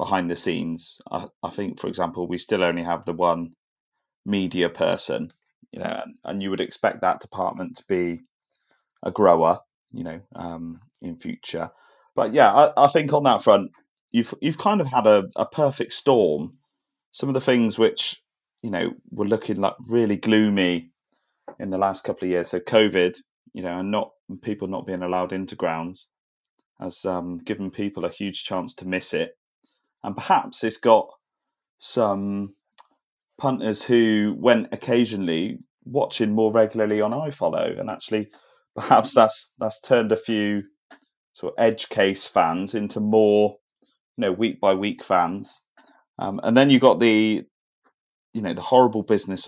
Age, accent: 30-49, British